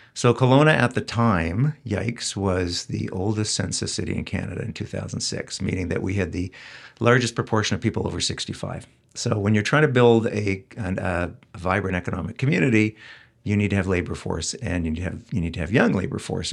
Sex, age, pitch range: male, 60-79, 90-115 Hz